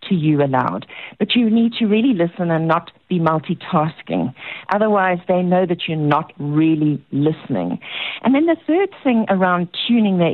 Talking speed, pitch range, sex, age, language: 160 wpm, 165-215 Hz, female, 50-69, English